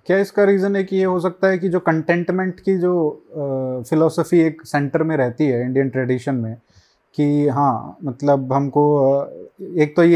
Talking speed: 170 wpm